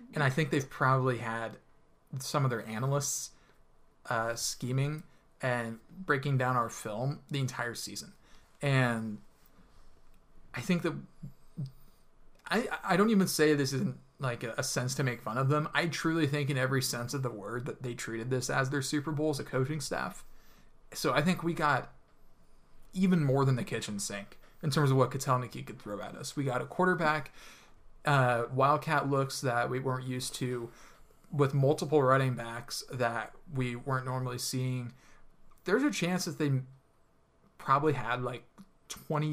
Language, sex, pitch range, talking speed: English, male, 125-150 Hz, 170 wpm